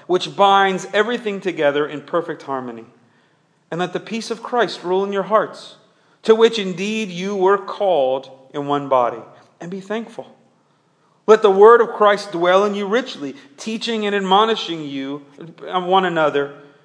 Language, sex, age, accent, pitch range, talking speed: English, male, 40-59, American, 145-195 Hz, 155 wpm